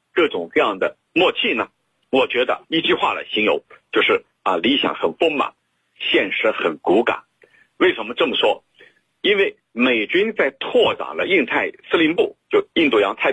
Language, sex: Chinese, male